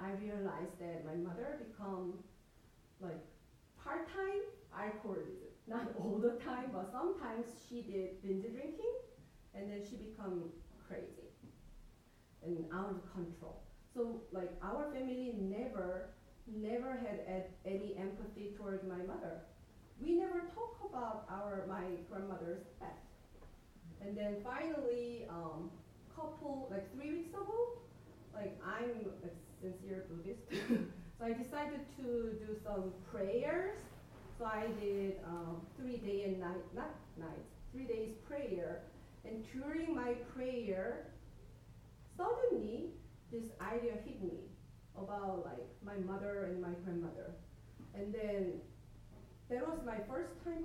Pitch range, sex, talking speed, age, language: 190-250 Hz, female, 120 wpm, 30-49, English